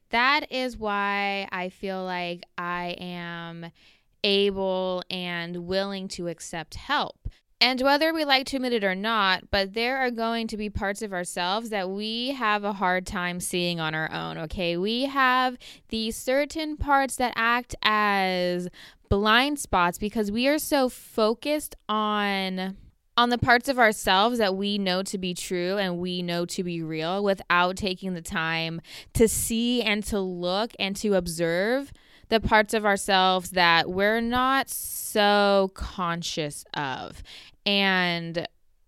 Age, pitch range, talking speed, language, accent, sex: 20-39, 180-225 Hz, 155 wpm, English, American, female